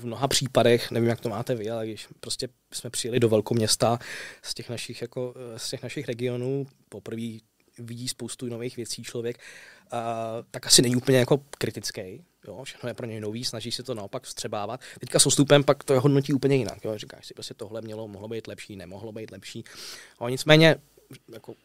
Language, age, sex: Czech, 20-39, male